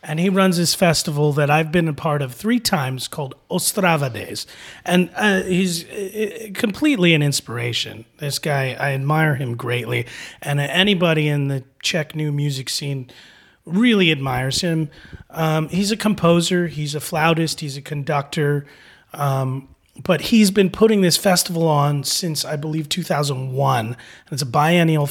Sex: male